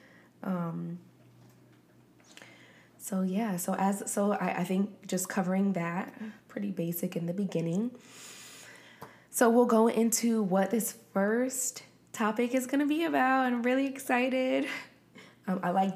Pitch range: 170-205 Hz